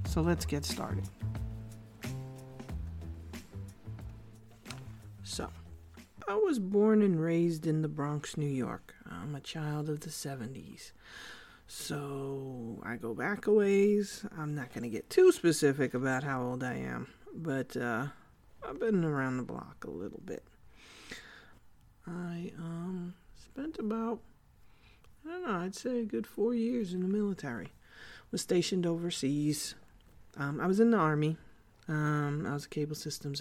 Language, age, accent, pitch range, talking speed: English, 40-59, American, 120-175 Hz, 140 wpm